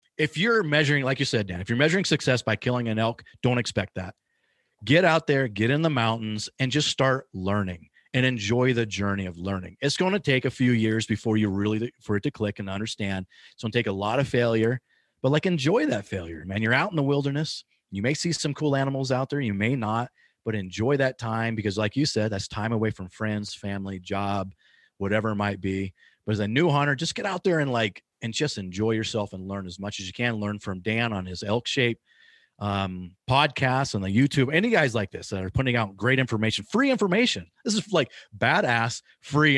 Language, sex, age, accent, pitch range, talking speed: English, male, 30-49, American, 100-135 Hz, 230 wpm